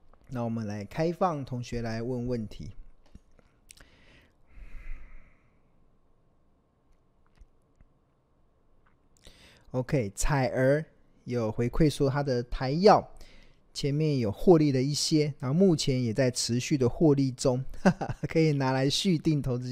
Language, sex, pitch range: Chinese, male, 120-150 Hz